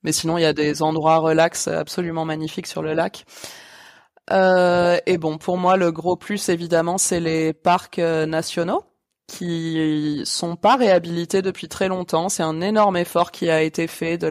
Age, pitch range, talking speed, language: 20-39, 160-185 Hz, 180 wpm, French